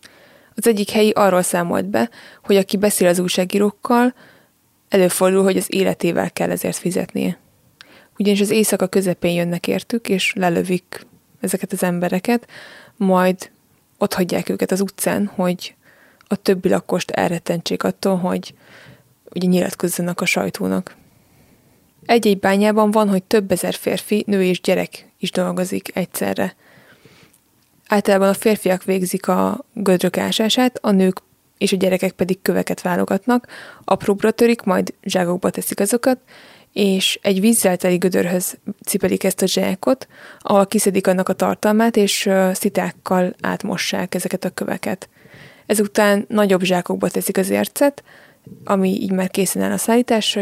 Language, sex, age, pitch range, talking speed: Hungarian, female, 20-39, 185-205 Hz, 135 wpm